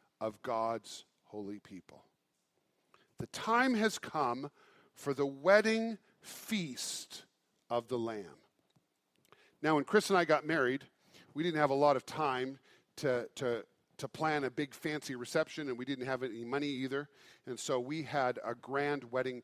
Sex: male